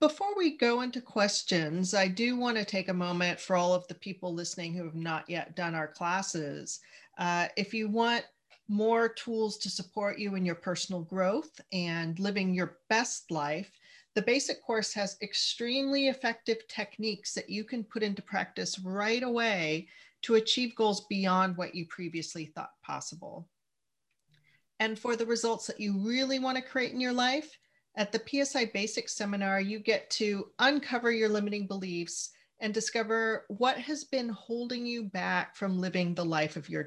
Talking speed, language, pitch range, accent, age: 170 wpm, English, 180-235 Hz, American, 40-59